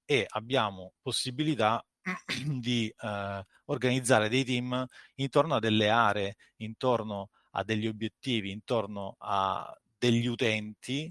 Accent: native